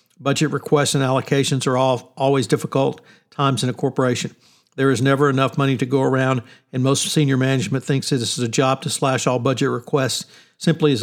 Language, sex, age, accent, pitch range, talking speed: English, male, 60-79, American, 130-150 Hz, 200 wpm